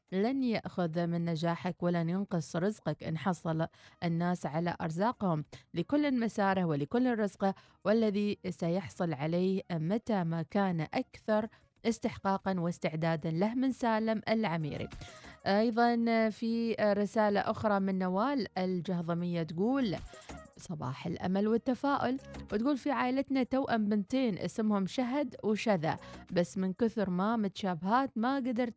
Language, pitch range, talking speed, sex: Arabic, 180-235 Hz, 115 wpm, female